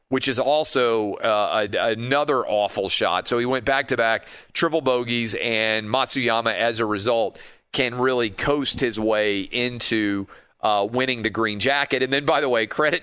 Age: 40-59